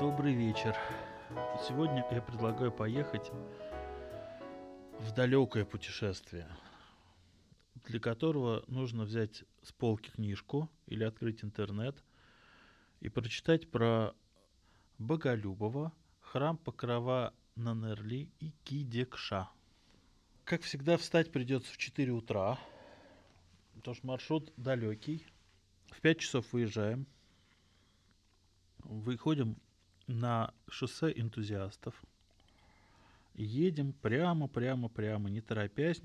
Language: Russian